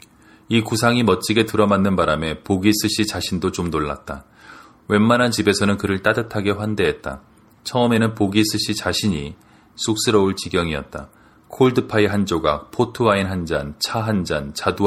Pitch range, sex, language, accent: 90-110 Hz, male, Korean, native